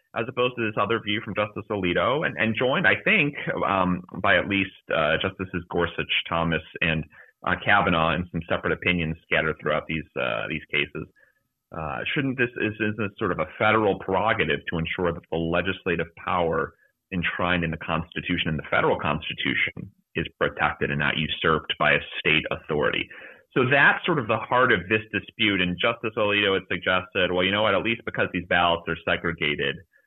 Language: English